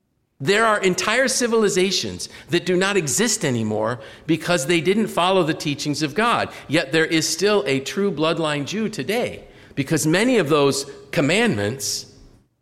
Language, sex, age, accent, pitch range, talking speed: English, male, 50-69, American, 115-165 Hz, 145 wpm